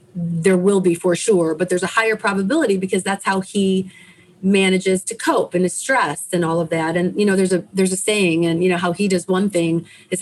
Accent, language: American, English